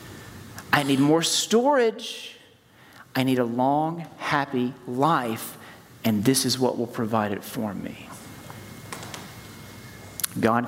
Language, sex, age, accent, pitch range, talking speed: English, male, 40-59, American, 115-170 Hz, 110 wpm